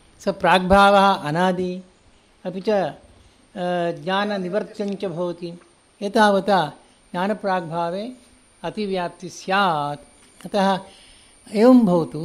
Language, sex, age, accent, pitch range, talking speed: English, male, 60-79, Indian, 175-210 Hz, 95 wpm